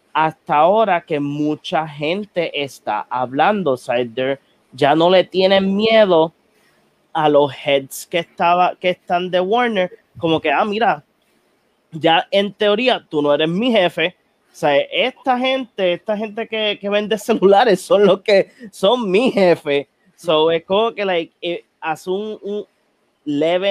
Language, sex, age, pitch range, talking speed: Spanish, male, 20-39, 145-190 Hz, 150 wpm